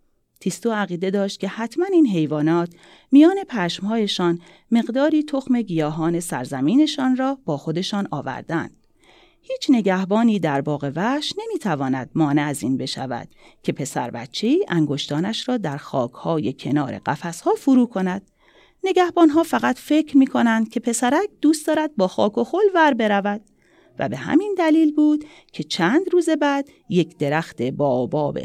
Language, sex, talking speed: Persian, female, 135 wpm